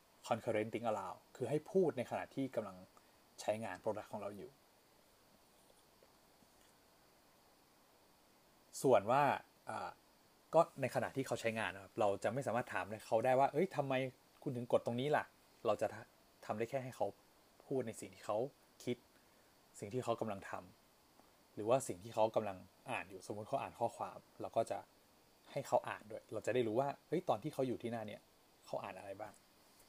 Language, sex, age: English, male, 20-39